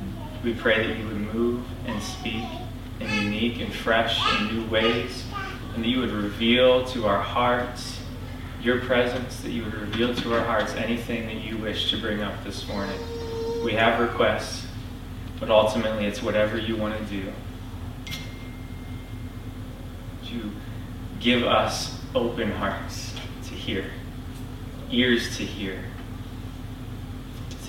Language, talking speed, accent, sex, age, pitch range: English, 140 wpm, American, male, 20-39, 105-125 Hz